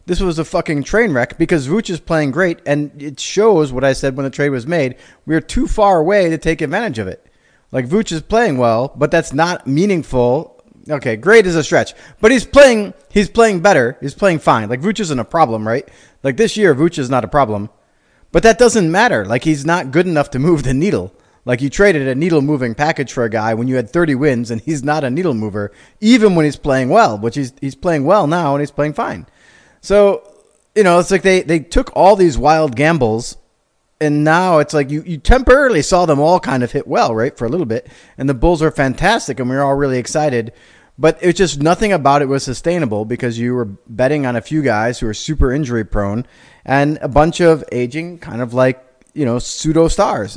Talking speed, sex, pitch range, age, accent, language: 230 wpm, male, 125-170 Hz, 20-39, American, English